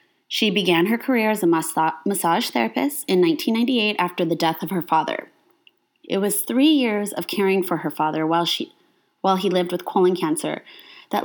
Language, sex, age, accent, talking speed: English, female, 20-39, American, 180 wpm